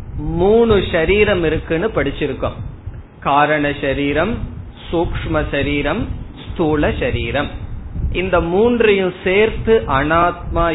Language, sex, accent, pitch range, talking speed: Tamil, male, native, 135-190 Hz, 60 wpm